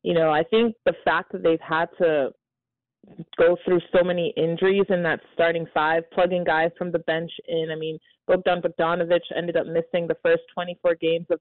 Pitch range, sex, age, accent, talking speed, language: 165-185 Hz, female, 20-39, American, 195 wpm, English